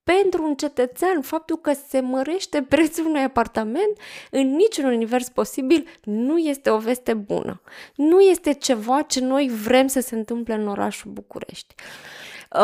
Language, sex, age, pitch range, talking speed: Romanian, female, 20-39, 235-295 Hz, 145 wpm